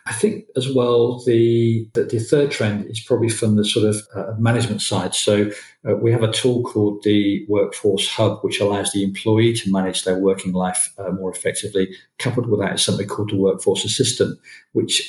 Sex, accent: male, British